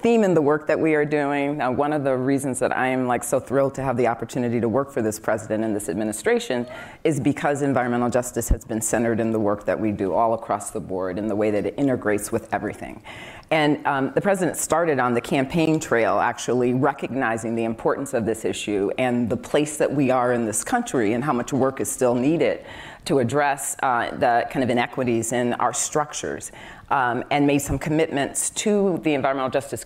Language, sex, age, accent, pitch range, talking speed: English, female, 40-59, American, 115-140 Hz, 215 wpm